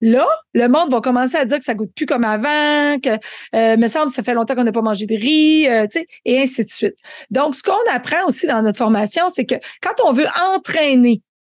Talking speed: 250 wpm